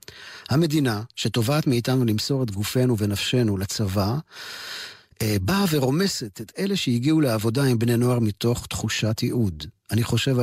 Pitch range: 105-130 Hz